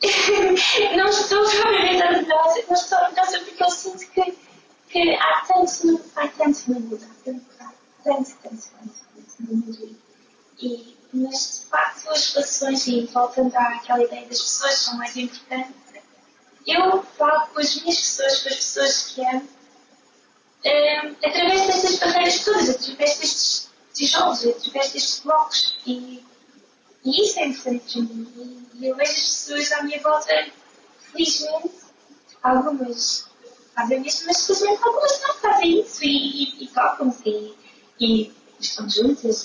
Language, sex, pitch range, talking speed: Portuguese, female, 240-315 Hz, 135 wpm